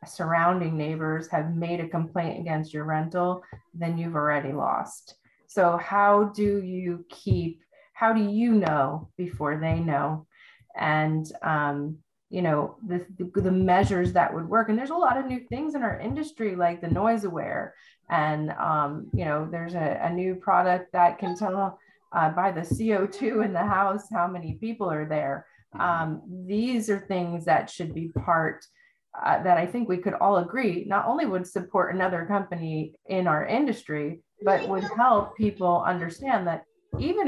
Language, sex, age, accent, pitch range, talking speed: English, female, 30-49, American, 165-210 Hz, 170 wpm